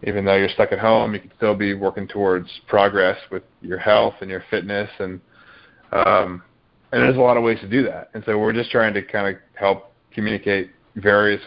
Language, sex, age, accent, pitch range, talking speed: English, male, 20-39, American, 100-110 Hz, 215 wpm